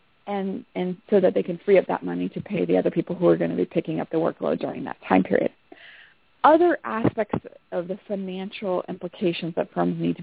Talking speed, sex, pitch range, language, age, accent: 225 wpm, female, 170-210 Hz, English, 30-49, American